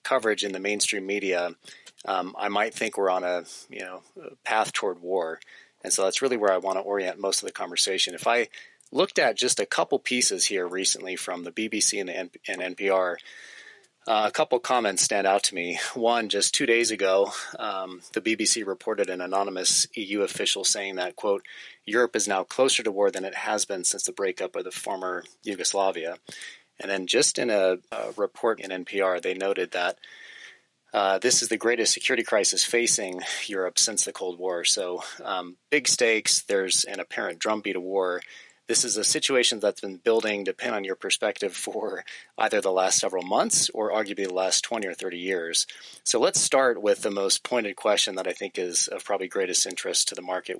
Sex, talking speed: male, 200 wpm